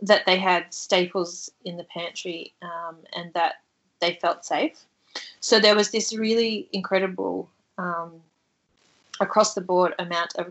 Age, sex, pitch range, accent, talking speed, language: 20-39, female, 175-205 Hz, Australian, 130 wpm, English